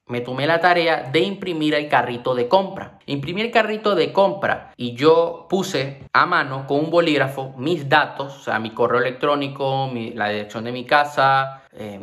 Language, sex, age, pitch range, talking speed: Spanish, male, 20-39, 125-170 Hz, 180 wpm